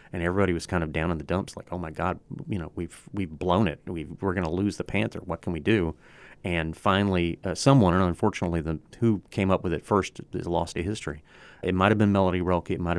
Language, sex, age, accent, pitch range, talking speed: English, male, 40-59, American, 85-100 Hz, 255 wpm